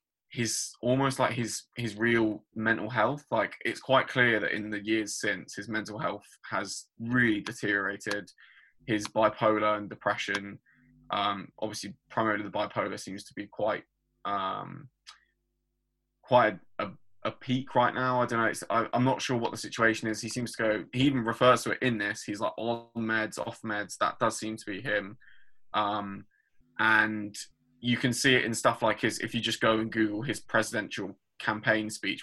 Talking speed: 185 wpm